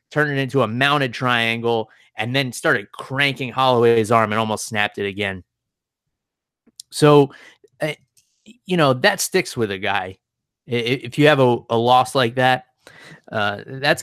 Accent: American